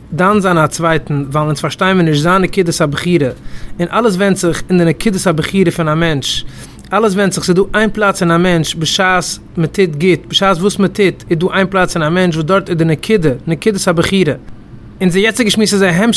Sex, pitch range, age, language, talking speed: male, 165-205 Hz, 30-49, English, 170 wpm